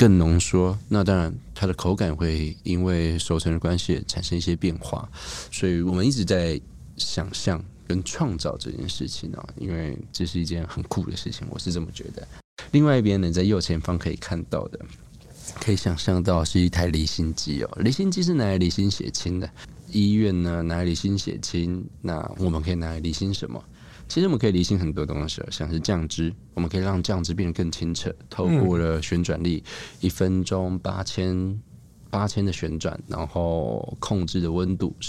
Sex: male